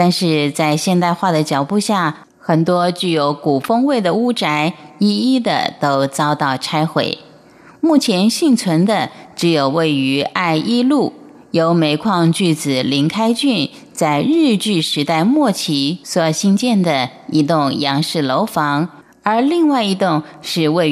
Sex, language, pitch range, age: female, Chinese, 150-210 Hz, 30-49